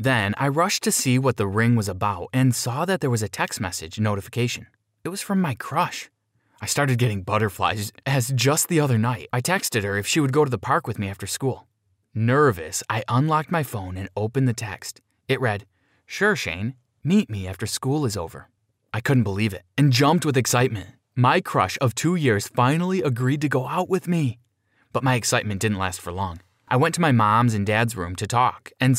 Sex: male